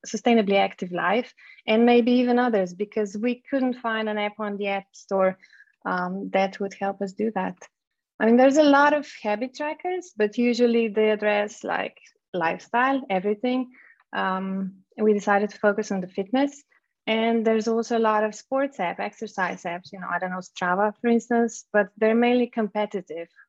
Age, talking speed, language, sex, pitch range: 20-39, 175 wpm, English, female, 195-245 Hz